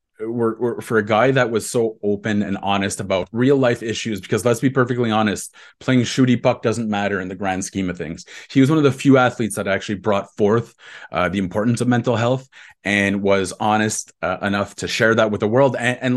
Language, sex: English, male